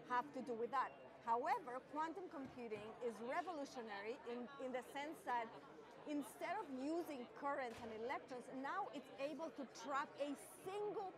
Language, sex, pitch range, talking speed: English, female, 245-300 Hz, 150 wpm